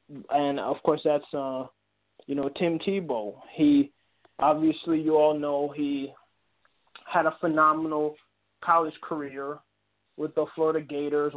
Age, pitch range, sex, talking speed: 20-39, 140-160 Hz, male, 125 wpm